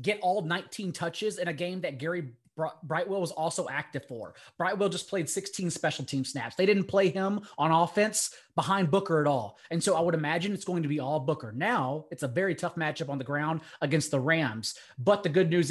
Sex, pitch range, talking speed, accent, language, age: male, 155-190 Hz, 220 wpm, American, English, 30-49